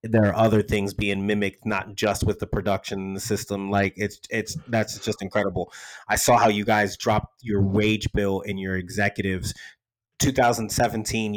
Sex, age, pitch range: male, 30-49, 100-110 Hz